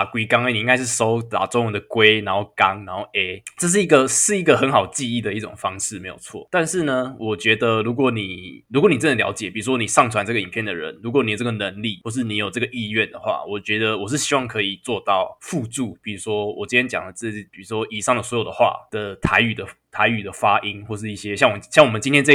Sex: male